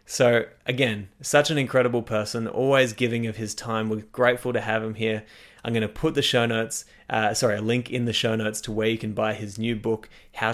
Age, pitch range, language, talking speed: 20-39, 100-120 Hz, English, 235 wpm